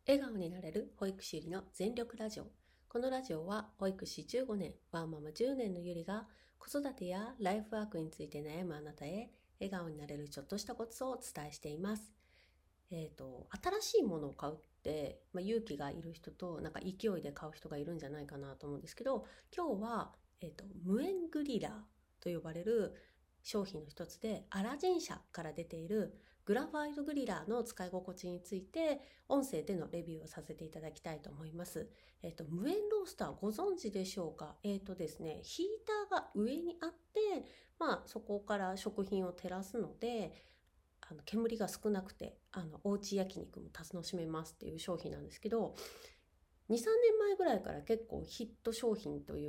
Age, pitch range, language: 40-59, 160-230 Hz, Japanese